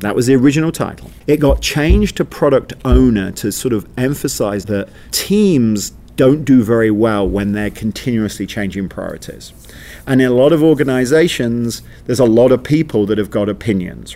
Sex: male